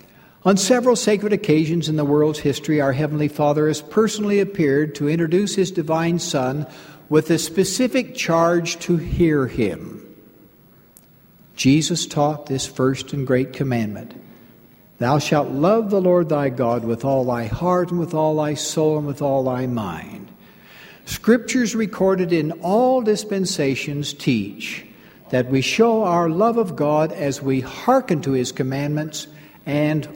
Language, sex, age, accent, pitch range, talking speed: English, male, 60-79, American, 140-190 Hz, 145 wpm